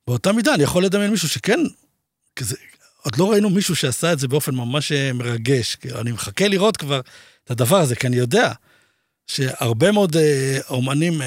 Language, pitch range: Hebrew, 135-175 Hz